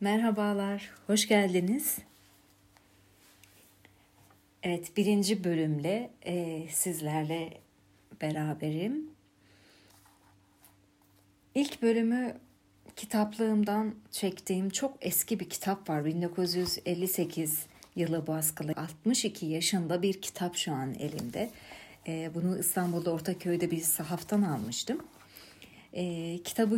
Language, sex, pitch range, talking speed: Turkish, female, 155-210 Hz, 85 wpm